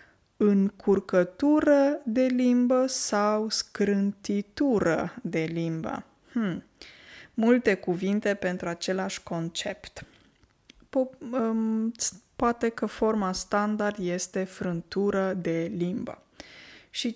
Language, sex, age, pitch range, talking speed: Romanian, female, 20-39, 195-240 Hz, 75 wpm